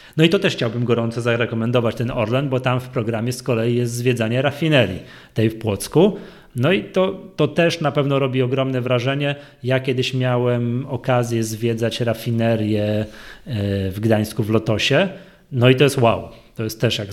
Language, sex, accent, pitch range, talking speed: Polish, male, native, 115-135 Hz, 175 wpm